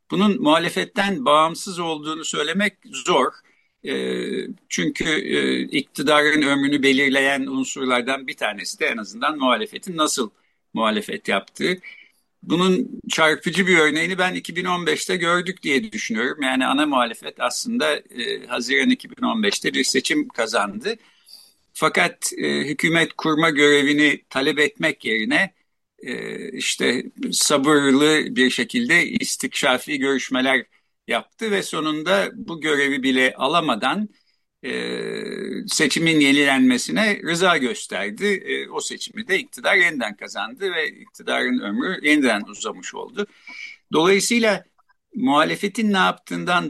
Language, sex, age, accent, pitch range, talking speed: Turkish, male, 60-79, native, 140-210 Hz, 100 wpm